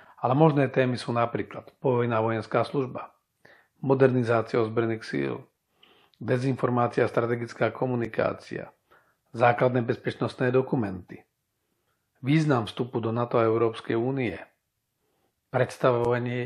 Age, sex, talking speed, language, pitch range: 40-59, male, 95 wpm, Slovak, 110-130 Hz